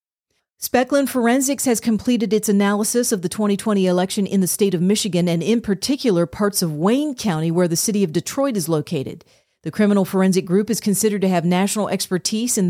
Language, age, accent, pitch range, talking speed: English, 40-59, American, 175-210 Hz, 190 wpm